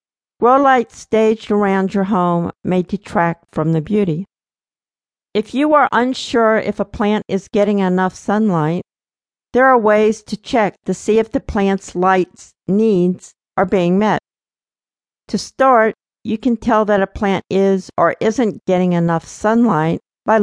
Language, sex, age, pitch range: English, female, 50-69, 185-225 Hz